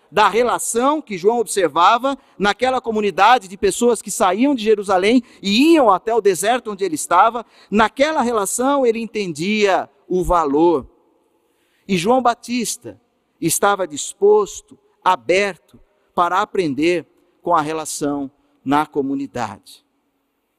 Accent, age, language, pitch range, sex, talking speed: Brazilian, 50-69, Portuguese, 180-265 Hz, male, 115 wpm